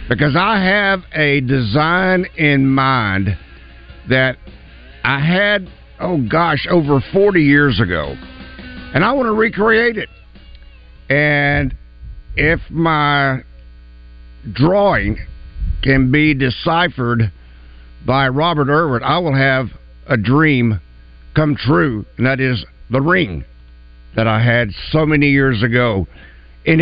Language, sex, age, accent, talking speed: English, male, 60-79, American, 115 wpm